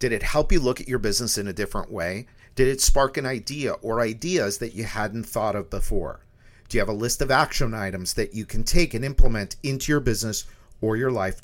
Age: 50-69